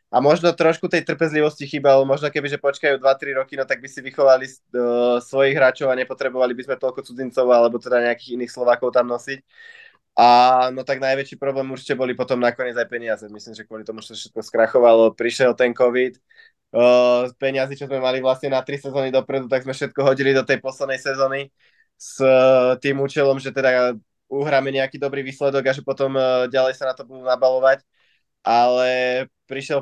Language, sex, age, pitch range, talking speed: Slovak, male, 20-39, 125-135 Hz, 190 wpm